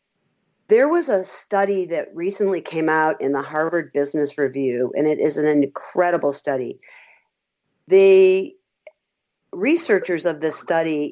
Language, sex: English, female